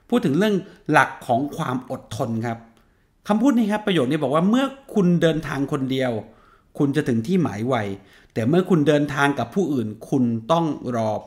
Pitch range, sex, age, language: 115-160 Hz, male, 30-49, Thai